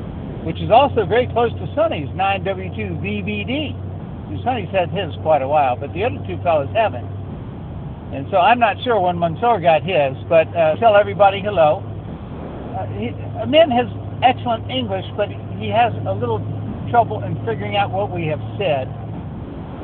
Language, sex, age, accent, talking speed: English, male, 60-79, American, 165 wpm